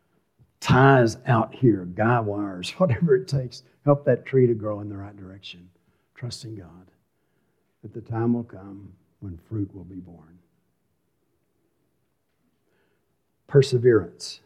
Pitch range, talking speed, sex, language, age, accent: 100-140 Hz, 125 wpm, male, English, 60-79, American